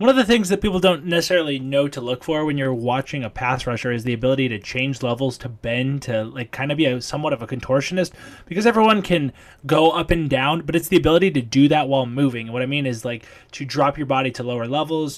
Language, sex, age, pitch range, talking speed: English, male, 20-39, 130-165 Hz, 255 wpm